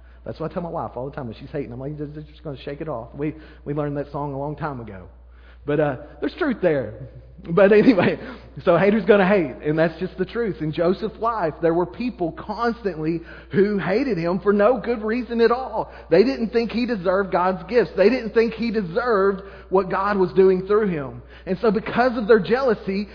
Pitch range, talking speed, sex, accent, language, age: 175-235 Hz, 220 wpm, male, American, English, 30-49